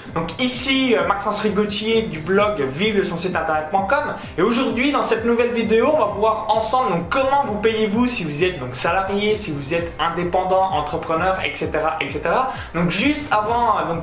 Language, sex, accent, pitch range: French, male, French, 170-215 Hz